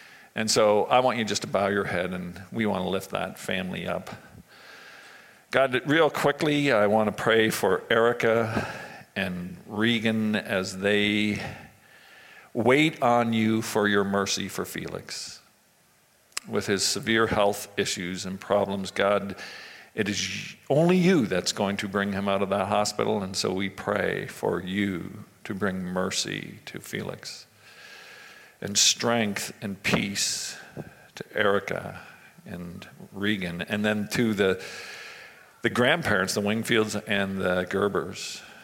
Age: 50-69